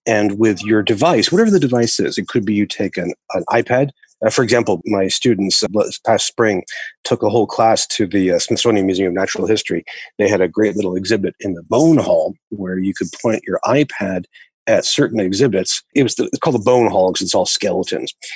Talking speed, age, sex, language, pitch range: 220 wpm, 40-59, male, English, 100-130 Hz